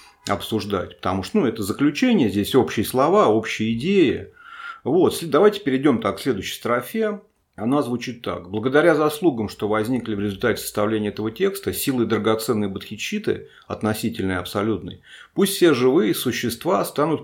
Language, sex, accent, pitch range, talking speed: Russian, male, native, 100-140 Hz, 145 wpm